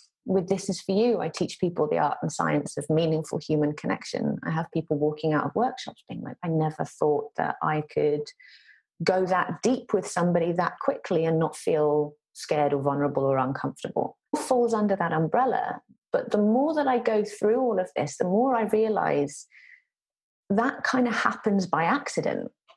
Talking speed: 185 wpm